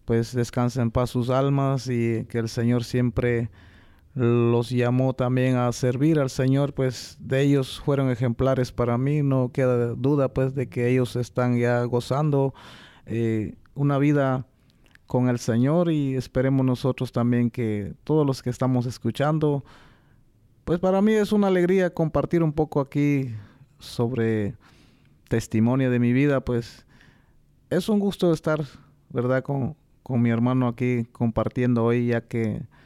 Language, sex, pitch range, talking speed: Spanish, male, 115-145 Hz, 145 wpm